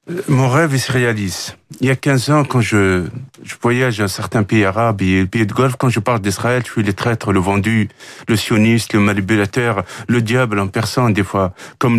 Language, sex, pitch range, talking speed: French, male, 115-155 Hz, 220 wpm